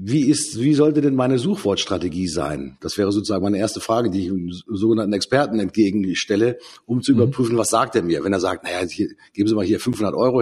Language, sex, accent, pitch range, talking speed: German, male, German, 105-145 Hz, 220 wpm